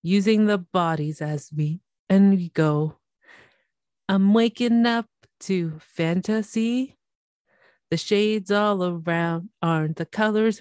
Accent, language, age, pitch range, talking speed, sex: American, English, 30-49, 165-210 Hz, 115 wpm, female